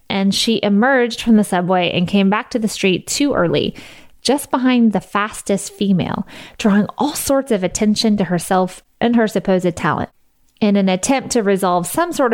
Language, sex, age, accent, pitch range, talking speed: English, female, 20-39, American, 190-235 Hz, 180 wpm